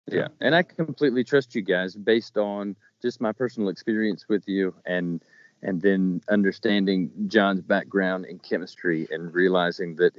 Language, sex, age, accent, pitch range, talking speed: English, male, 40-59, American, 90-110 Hz, 155 wpm